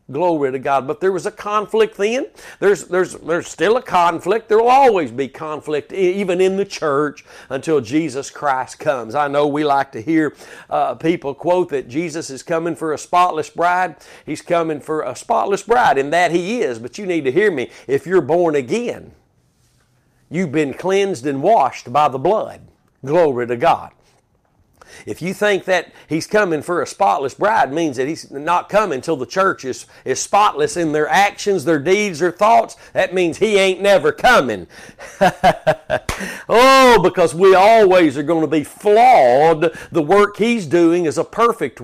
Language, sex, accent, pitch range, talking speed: English, male, American, 150-200 Hz, 180 wpm